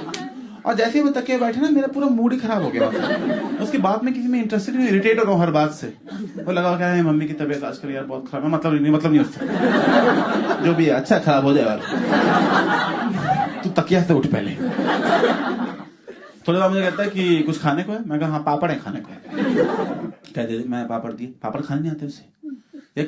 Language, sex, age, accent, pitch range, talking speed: Hindi, male, 30-49, native, 150-230 Hz, 155 wpm